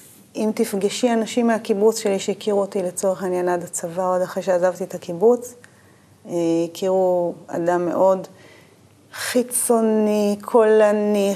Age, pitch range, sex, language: 30-49, 180-215 Hz, female, Hebrew